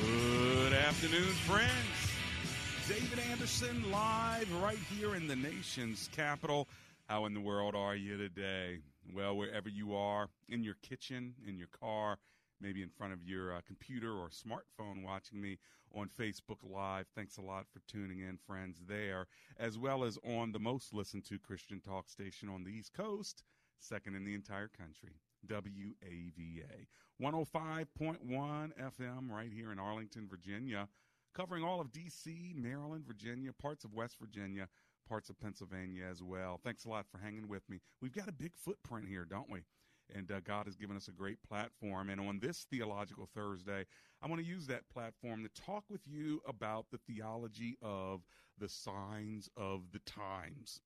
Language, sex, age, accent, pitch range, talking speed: English, male, 40-59, American, 95-130 Hz, 170 wpm